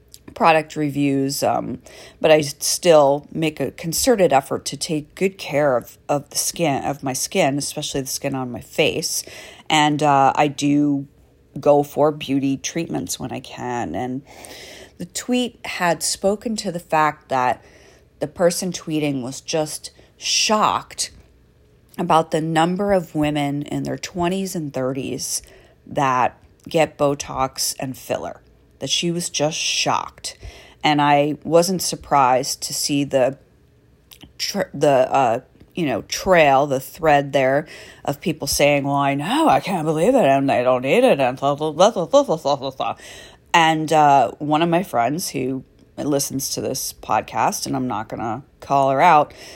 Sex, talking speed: female, 155 wpm